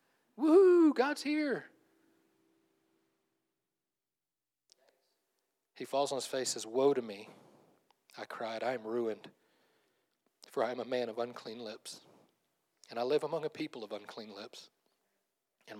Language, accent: English, American